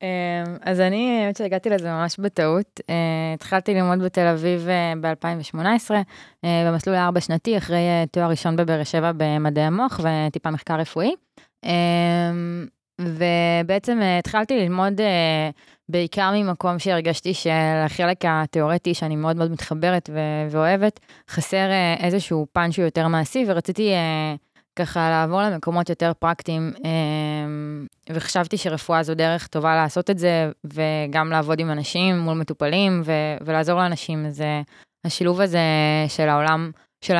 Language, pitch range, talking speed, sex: Hebrew, 160-180 Hz, 120 wpm, female